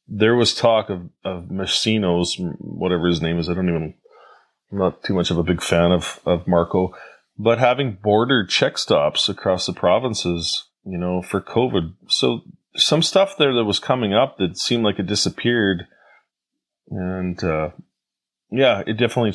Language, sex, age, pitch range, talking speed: English, male, 20-39, 90-110 Hz, 165 wpm